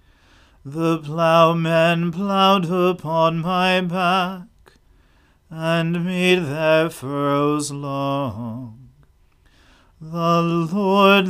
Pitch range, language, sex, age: 140-170 Hz, English, male, 40-59